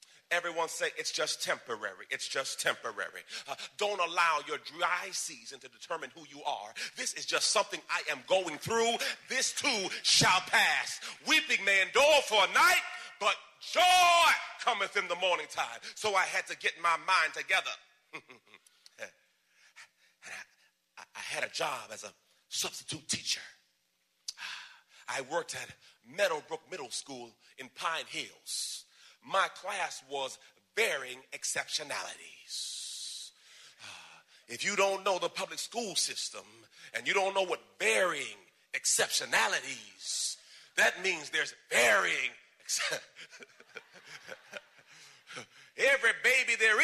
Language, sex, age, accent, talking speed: English, male, 40-59, American, 125 wpm